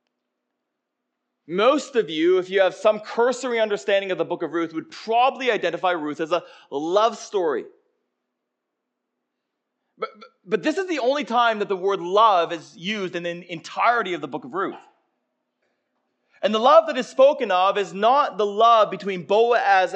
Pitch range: 190-265 Hz